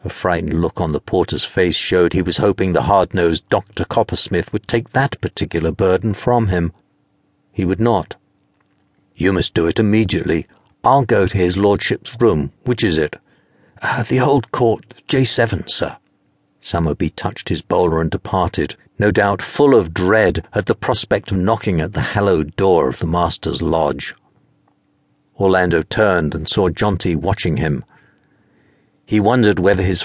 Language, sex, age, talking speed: English, male, 60-79, 160 wpm